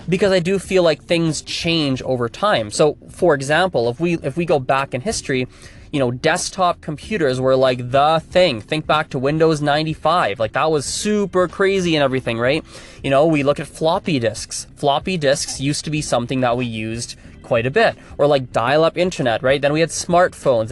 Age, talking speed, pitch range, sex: 20-39, 205 wpm, 125-160 Hz, male